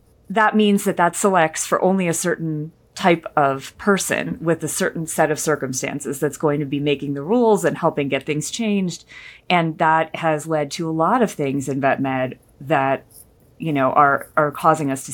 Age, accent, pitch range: 30-49, American, 135-170 Hz